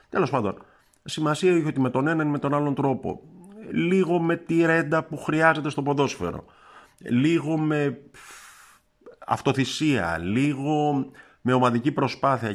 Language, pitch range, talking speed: Greek, 105-160 Hz, 135 wpm